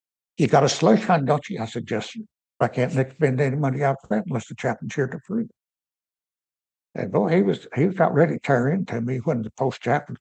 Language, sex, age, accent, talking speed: English, male, 60-79, American, 235 wpm